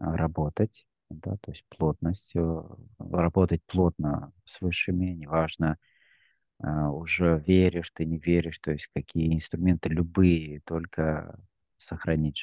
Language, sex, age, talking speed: Russian, male, 30-49, 105 wpm